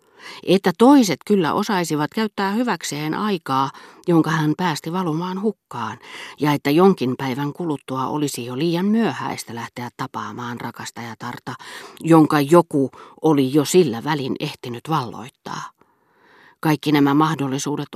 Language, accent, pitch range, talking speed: Finnish, native, 130-180 Hz, 115 wpm